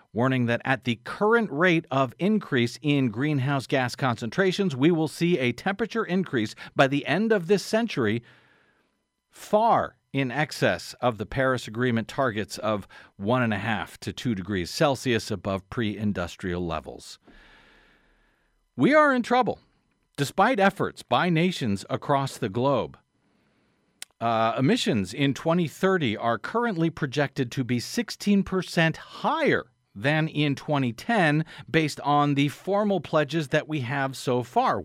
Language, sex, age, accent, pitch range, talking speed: English, male, 50-69, American, 125-170 Hz, 130 wpm